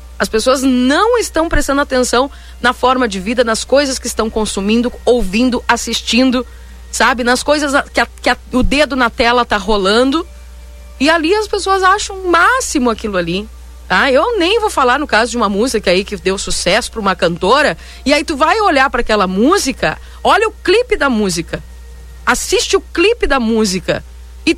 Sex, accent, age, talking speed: female, Brazilian, 50-69, 180 wpm